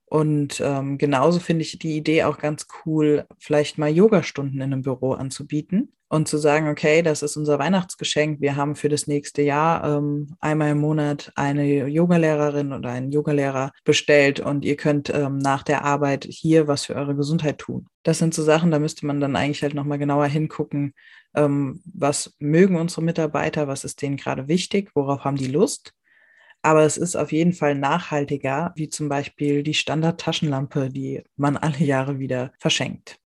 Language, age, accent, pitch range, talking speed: German, 20-39, German, 145-160 Hz, 180 wpm